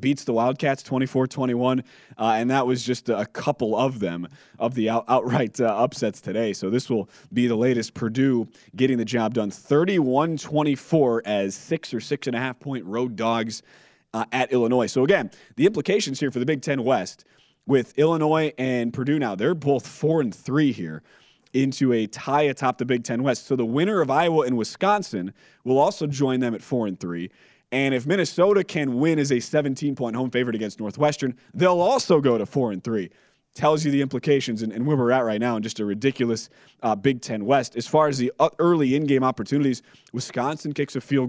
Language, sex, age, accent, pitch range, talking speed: English, male, 30-49, American, 120-145 Hz, 190 wpm